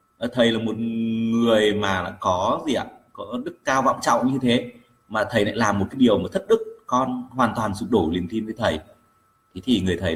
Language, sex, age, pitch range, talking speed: Vietnamese, male, 20-39, 85-115 Hz, 220 wpm